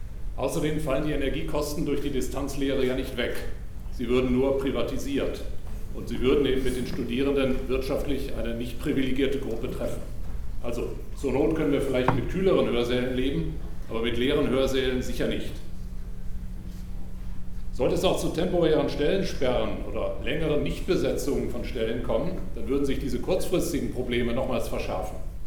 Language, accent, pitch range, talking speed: German, German, 115-145 Hz, 150 wpm